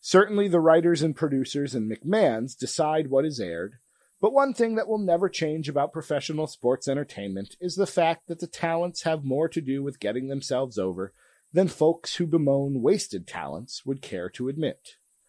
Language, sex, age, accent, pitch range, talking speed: English, male, 40-59, American, 135-180 Hz, 180 wpm